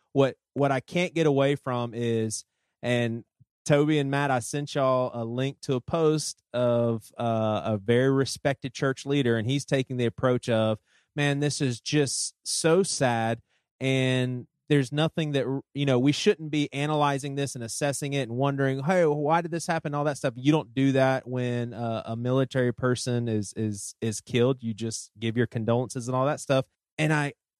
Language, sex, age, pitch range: English, male, 30-49, 120-145 Hz